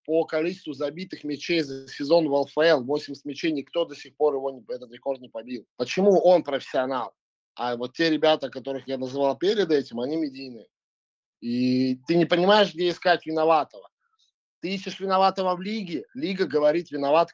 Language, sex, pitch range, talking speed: Russian, male, 140-185 Hz, 170 wpm